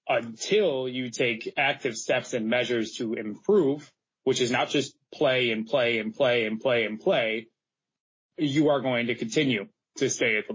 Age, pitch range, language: 20-39, 110-135 Hz, English